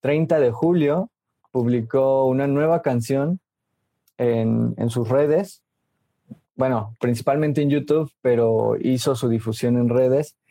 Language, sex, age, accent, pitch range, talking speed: Spanish, male, 20-39, Mexican, 120-145 Hz, 120 wpm